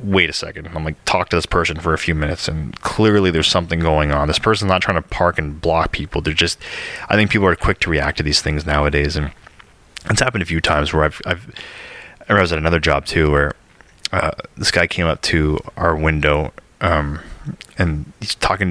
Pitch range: 80-105 Hz